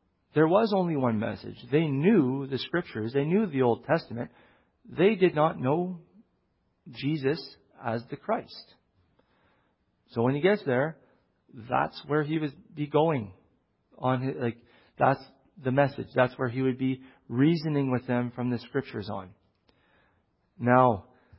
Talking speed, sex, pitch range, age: 145 wpm, male, 115-145 Hz, 40-59